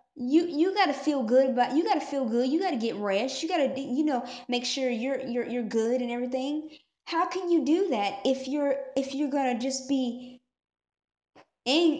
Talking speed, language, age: 195 wpm, English, 20-39